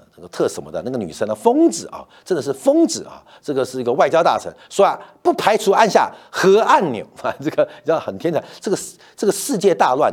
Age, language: 50-69, Chinese